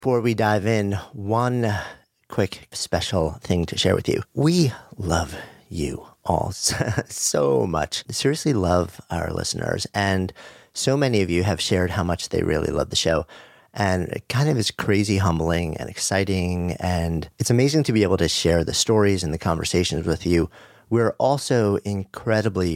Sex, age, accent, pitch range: male, 40-59, American, 90-115 Hz